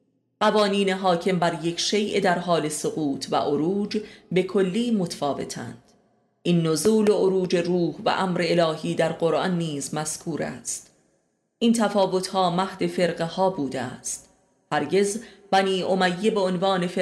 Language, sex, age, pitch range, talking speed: Persian, female, 30-49, 165-195 Hz, 140 wpm